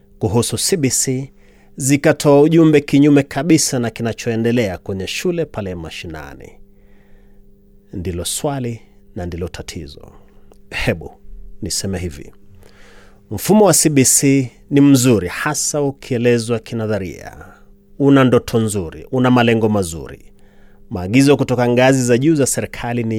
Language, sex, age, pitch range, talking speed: Swahili, male, 30-49, 100-130 Hz, 110 wpm